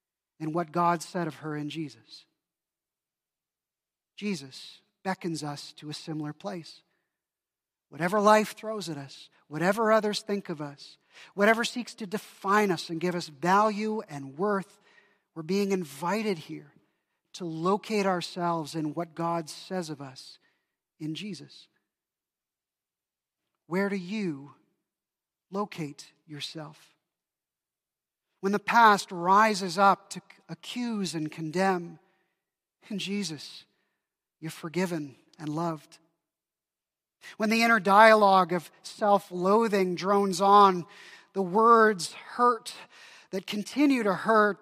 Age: 40-59